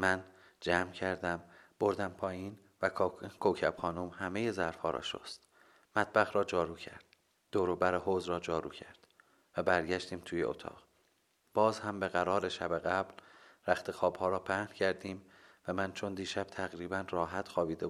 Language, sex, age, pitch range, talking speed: Persian, male, 30-49, 90-105 Hz, 140 wpm